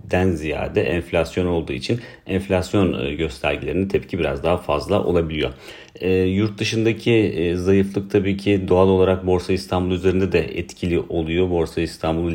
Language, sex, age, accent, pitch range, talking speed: Turkish, male, 40-59, native, 80-95 Hz, 135 wpm